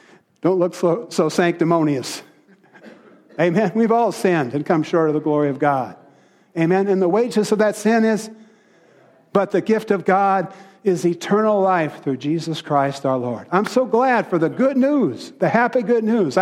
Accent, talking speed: American, 180 wpm